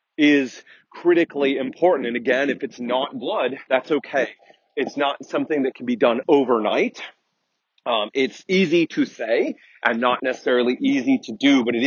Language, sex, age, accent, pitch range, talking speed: English, male, 30-49, American, 130-175 Hz, 160 wpm